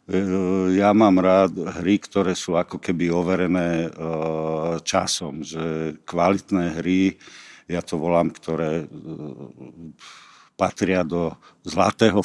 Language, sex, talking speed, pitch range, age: Slovak, male, 100 wpm, 85-95 Hz, 50-69